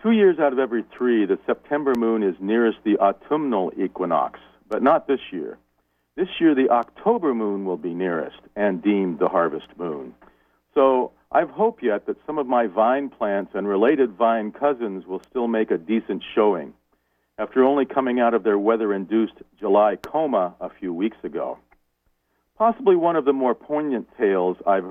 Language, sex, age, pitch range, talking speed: English, male, 50-69, 100-140 Hz, 175 wpm